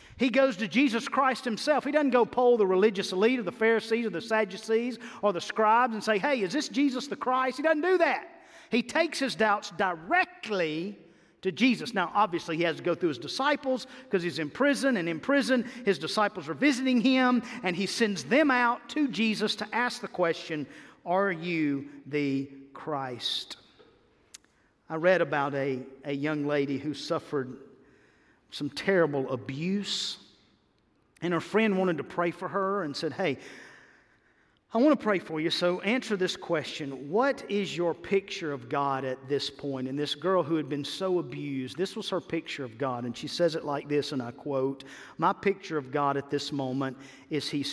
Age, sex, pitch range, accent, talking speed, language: 50-69, male, 145-225 Hz, American, 190 wpm, English